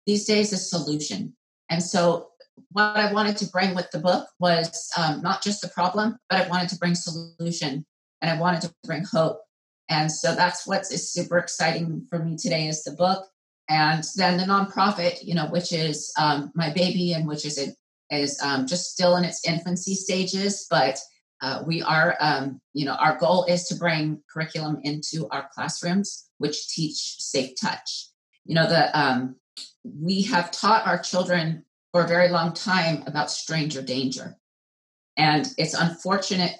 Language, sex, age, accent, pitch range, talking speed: English, female, 40-59, American, 150-180 Hz, 175 wpm